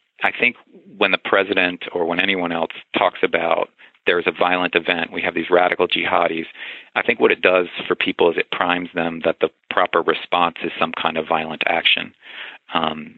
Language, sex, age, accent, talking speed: English, male, 40-59, American, 195 wpm